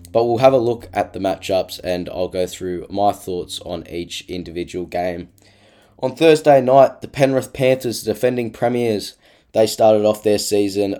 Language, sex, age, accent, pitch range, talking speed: English, male, 10-29, Australian, 90-105 Hz, 170 wpm